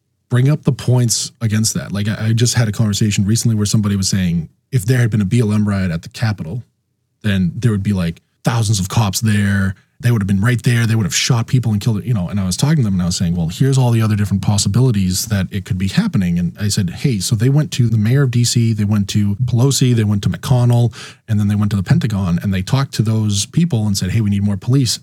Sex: male